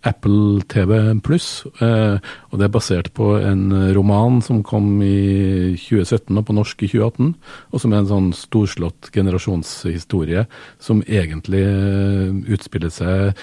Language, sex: English, male